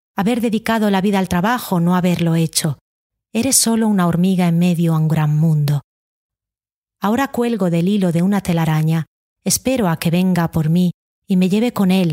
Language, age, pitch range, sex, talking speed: Spanish, 30-49, 160-205 Hz, female, 185 wpm